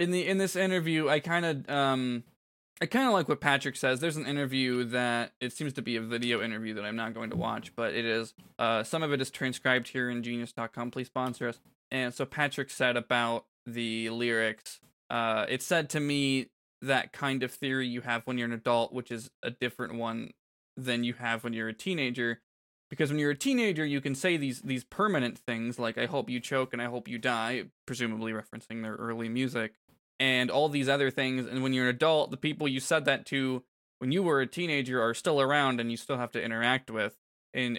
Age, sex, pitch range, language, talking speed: 20-39, male, 115-140 Hz, English, 220 wpm